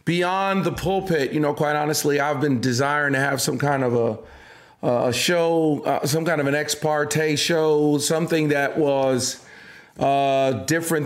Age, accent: 40-59, American